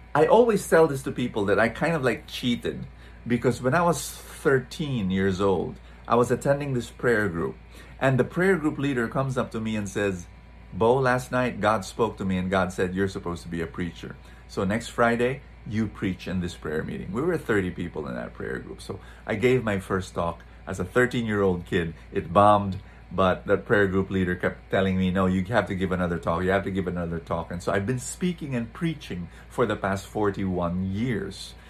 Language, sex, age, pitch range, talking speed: English, male, 30-49, 90-125 Hz, 220 wpm